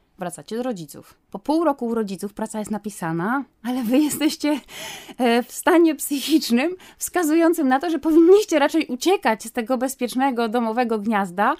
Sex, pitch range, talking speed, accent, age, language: female, 200-270 Hz, 150 wpm, native, 20-39, Polish